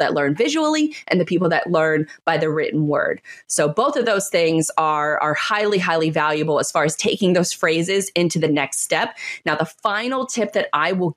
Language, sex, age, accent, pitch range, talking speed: English, female, 20-39, American, 165-240 Hz, 210 wpm